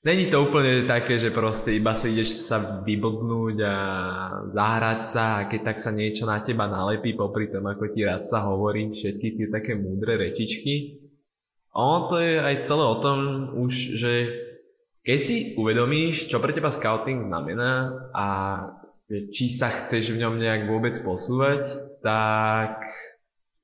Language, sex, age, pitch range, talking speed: Slovak, male, 20-39, 105-130 Hz, 150 wpm